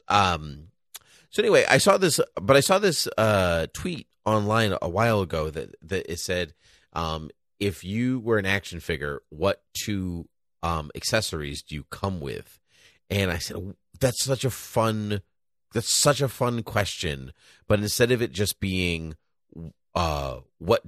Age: 30-49